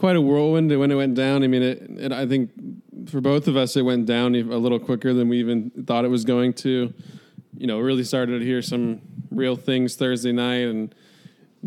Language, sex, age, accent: English, male, 20-39, American